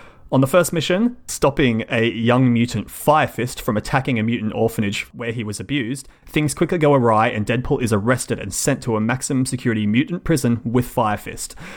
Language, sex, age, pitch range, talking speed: English, male, 30-49, 110-130 Hz, 185 wpm